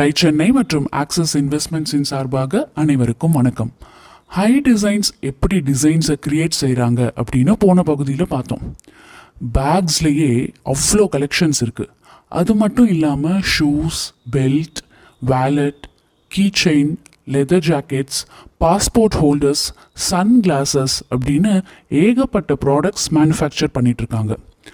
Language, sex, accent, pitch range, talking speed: Tamil, male, native, 135-175 Hz, 85 wpm